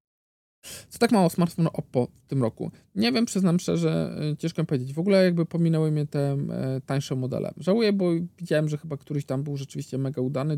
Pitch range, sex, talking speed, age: 135-175 Hz, male, 185 wpm, 50-69